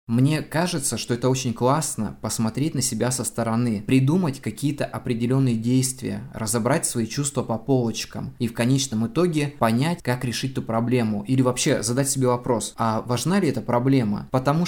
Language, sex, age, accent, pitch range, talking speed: Russian, male, 20-39, native, 120-140 Hz, 165 wpm